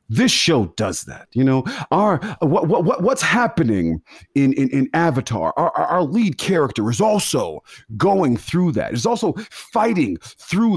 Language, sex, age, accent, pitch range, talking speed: English, male, 40-59, American, 140-225 Hz, 155 wpm